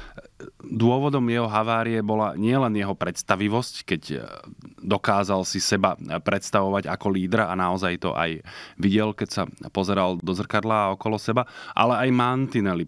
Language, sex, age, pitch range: Slovak, male, 20-39, 95-110 Hz